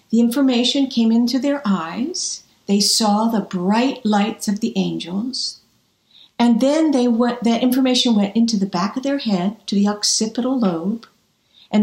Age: 50-69